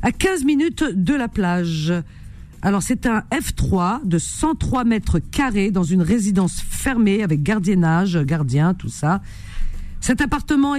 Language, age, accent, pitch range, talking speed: French, 50-69, French, 135-215 Hz, 140 wpm